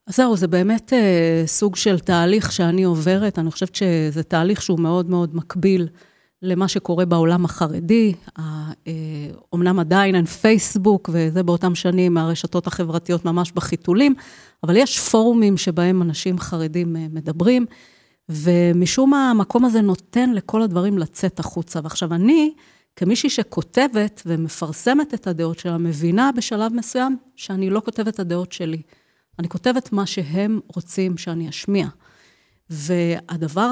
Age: 30-49